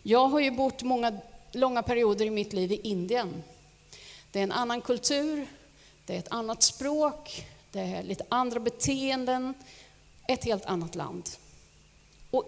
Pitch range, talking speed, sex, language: 190-260 Hz, 155 wpm, female, Swedish